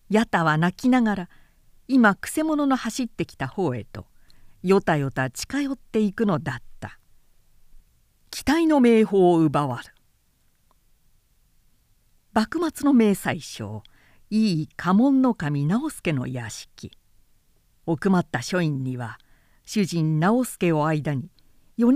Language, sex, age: Japanese, female, 50-69